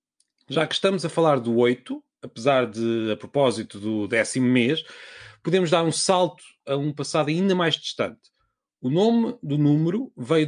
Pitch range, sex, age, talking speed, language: 125-175 Hz, male, 30-49, 165 wpm, Portuguese